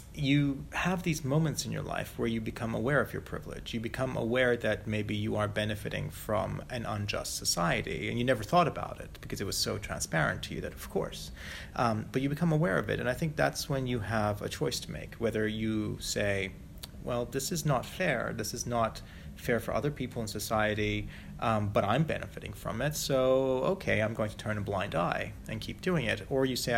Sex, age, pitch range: male, 30-49, 105-130 Hz